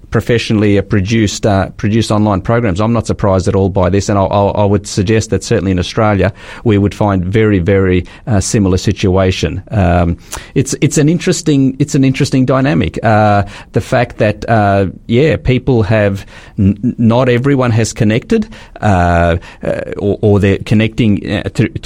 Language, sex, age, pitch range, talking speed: English, male, 30-49, 100-135 Hz, 160 wpm